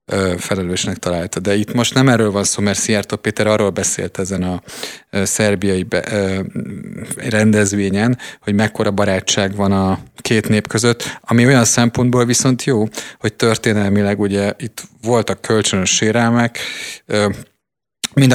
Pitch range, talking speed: 95-115 Hz, 130 wpm